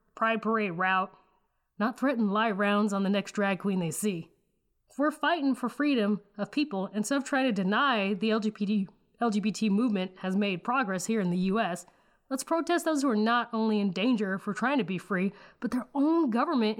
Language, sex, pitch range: English, female, 195-250 Hz